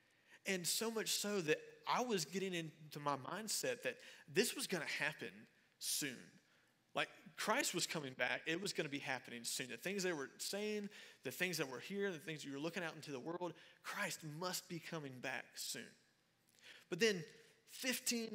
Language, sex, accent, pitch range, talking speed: English, male, American, 150-205 Hz, 190 wpm